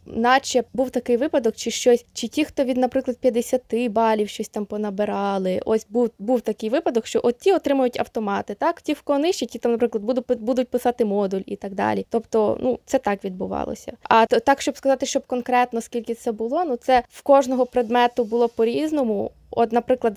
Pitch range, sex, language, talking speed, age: 230-260 Hz, female, Ukrainian, 185 wpm, 20-39